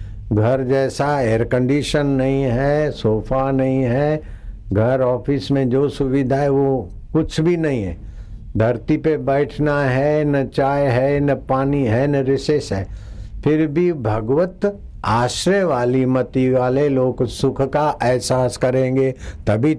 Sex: male